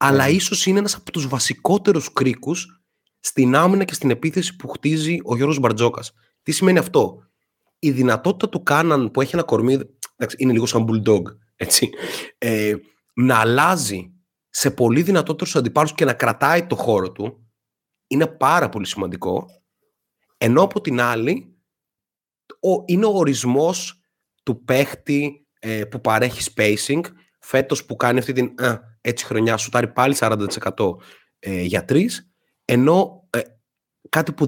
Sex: male